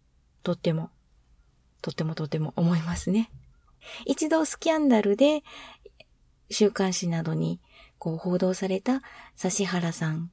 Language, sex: Japanese, female